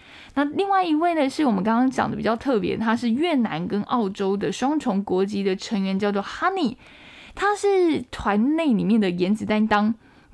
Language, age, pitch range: Chinese, 10-29, 200-270 Hz